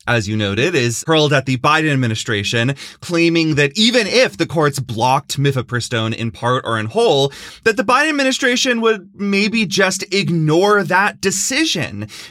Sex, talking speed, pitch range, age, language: male, 155 wpm, 120-200 Hz, 30-49, English